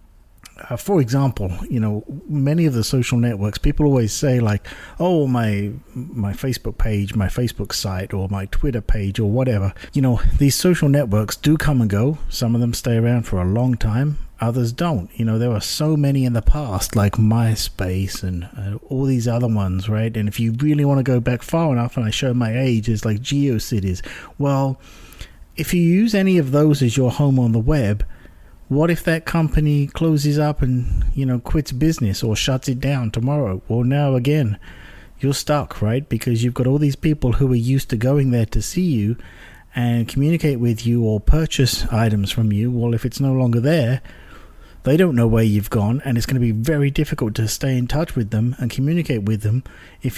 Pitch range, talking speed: 110-140 Hz, 205 wpm